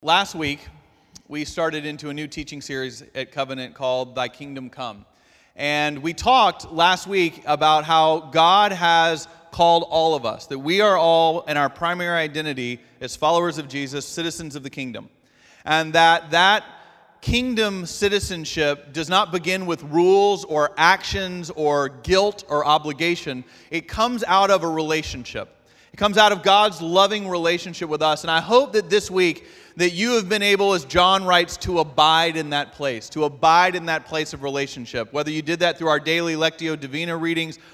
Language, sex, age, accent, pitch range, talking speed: English, male, 30-49, American, 150-195 Hz, 175 wpm